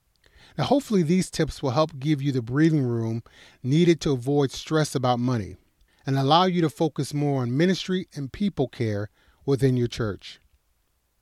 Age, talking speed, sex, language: 30-49, 165 wpm, male, English